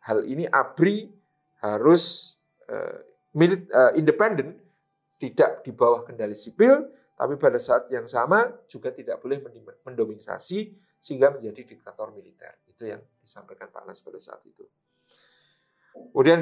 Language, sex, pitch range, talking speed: Indonesian, male, 125-210 Hz, 130 wpm